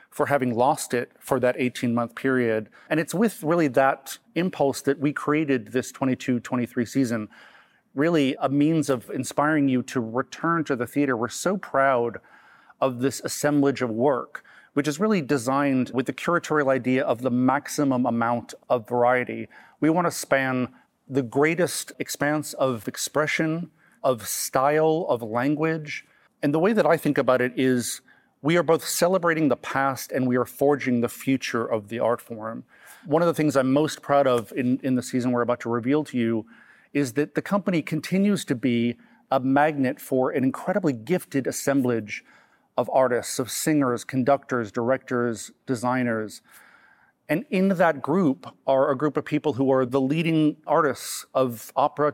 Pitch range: 125-150 Hz